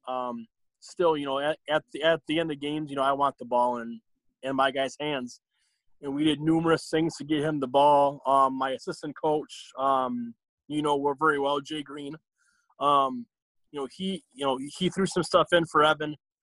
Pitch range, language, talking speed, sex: 130-160 Hz, English, 210 wpm, male